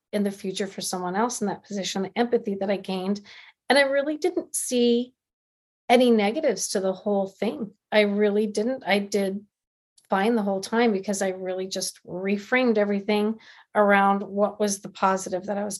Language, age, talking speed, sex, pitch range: English, 40-59, 180 wpm, female, 190-215 Hz